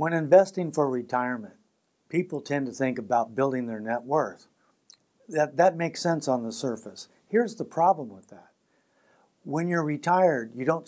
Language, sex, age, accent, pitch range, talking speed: English, male, 60-79, American, 125-150 Hz, 165 wpm